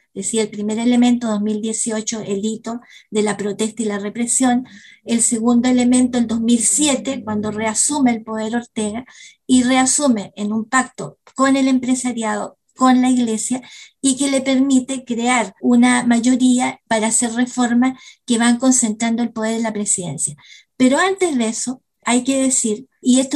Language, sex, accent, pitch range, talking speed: Spanish, female, American, 220-260 Hz, 155 wpm